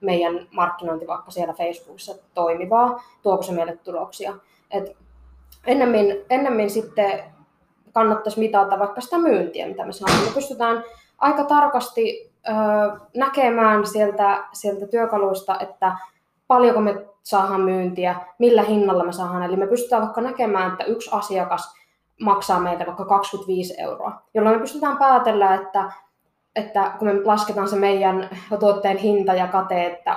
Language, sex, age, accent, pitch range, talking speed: Finnish, female, 20-39, native, 185-220 Hz, 135 wpm